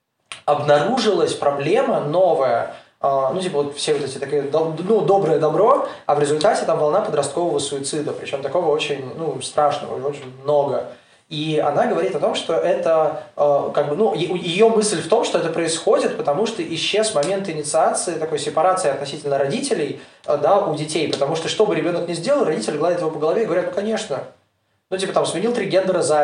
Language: Russian